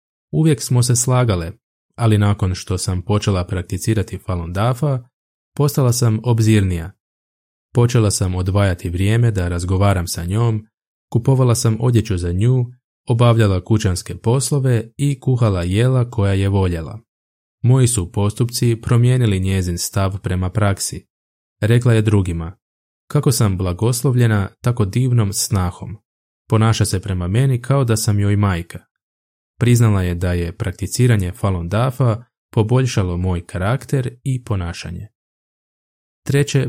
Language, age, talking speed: Croatian, 20-39, 125 wpm